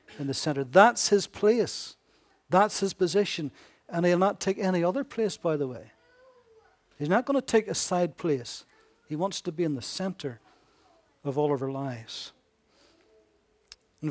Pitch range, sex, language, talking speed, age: 145-185 Hz, male, English, 170 wpm, 60-79